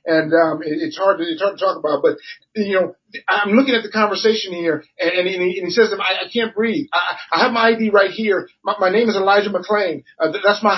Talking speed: 210 wpm